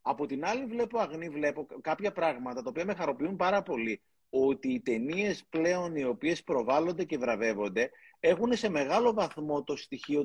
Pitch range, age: 145-200 Hz, 30-49